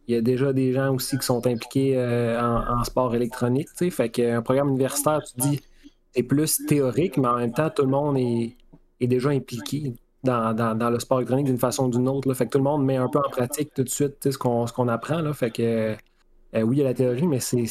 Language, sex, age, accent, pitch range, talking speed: French, male, 30-49, Canadian, 120-135 Hz, 265 wpm